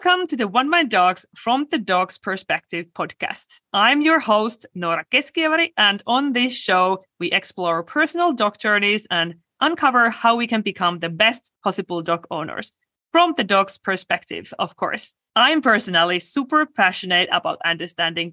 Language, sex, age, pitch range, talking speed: English, female, 30-49, 190-275 Hz, 155 wpm